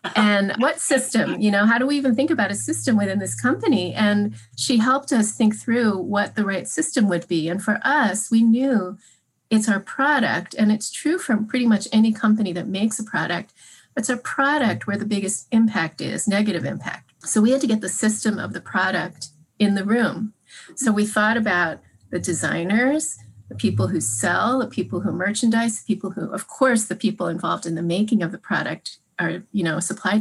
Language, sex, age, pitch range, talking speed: English, female, 40-59, 180-220 Hz, 205 wpm